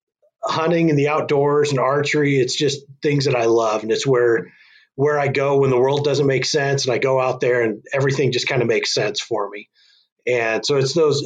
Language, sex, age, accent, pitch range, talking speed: English, male, 30-49, American, 125-145 Hz, 225 wpm